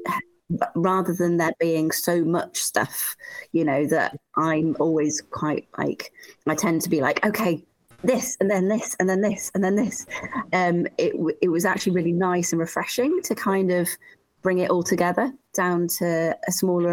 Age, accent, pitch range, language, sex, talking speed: 30-49, British, 160-185 Hz, English, female, 180 wpm